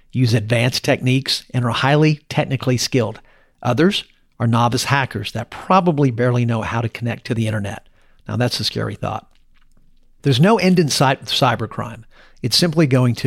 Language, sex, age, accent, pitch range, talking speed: English, male, 50-69, American, 115-140 Hz, 170 wpm